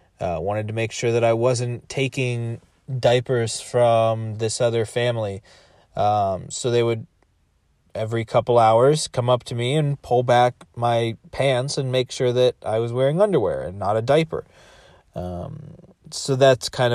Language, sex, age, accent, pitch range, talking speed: English, male, 20-39, American, 110-130 Hz, 165 wpm